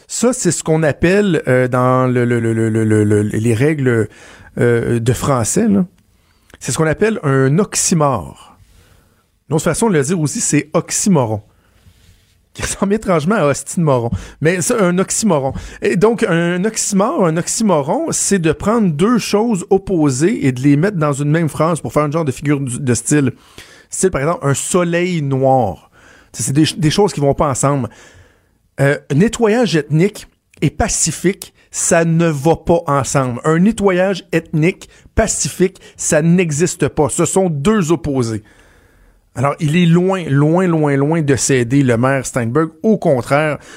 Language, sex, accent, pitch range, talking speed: French, male, Canadian, 125-175 Hz, 165 wpm